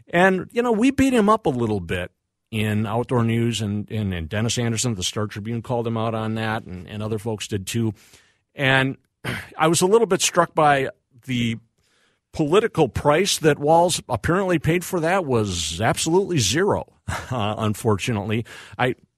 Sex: male